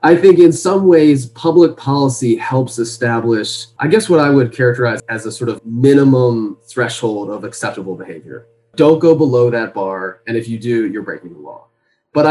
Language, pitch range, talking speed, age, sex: English, 110-130 Hz, 185 wpm, 20-39, male